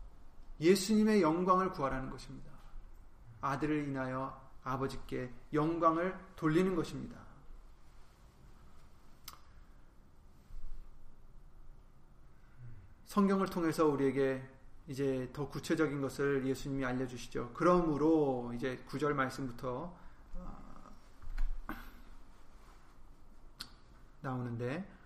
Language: Korean